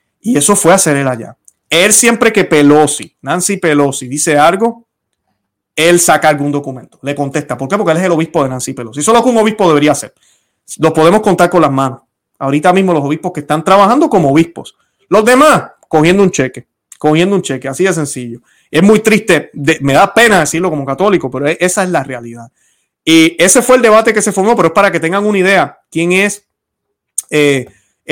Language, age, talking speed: Spanish, 30-49, 205 wpm